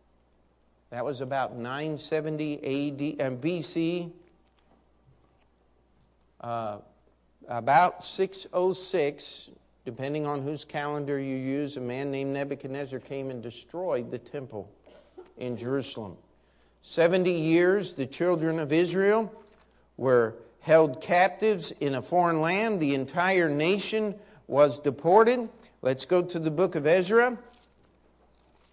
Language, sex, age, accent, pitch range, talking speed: English, male, 50-69, American, 135-195 Hz, 110 wpm